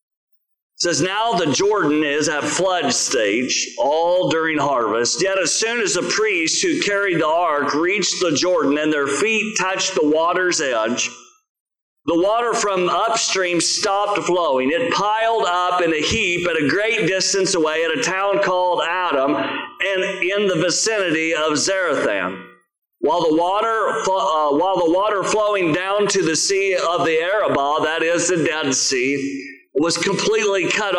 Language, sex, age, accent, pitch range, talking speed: English, male, 50-69, American, 165-215 Hz, 160 wpm